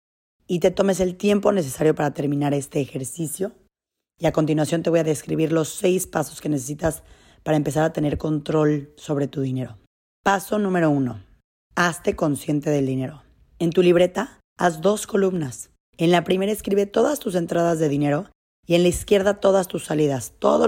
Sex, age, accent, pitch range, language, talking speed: female, 30-49, Mexican, 150-185 Hz, Spanish, 175 wpm